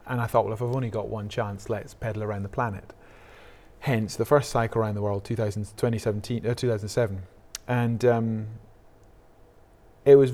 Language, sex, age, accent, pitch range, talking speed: English, male, 20-39, British, 105-120 Hz, 205 wpm